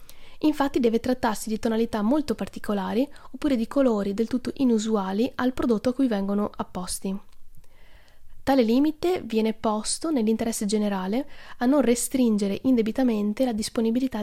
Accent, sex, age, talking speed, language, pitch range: native, female, 20-39, 130 wpm, Italian, 210-255 Hz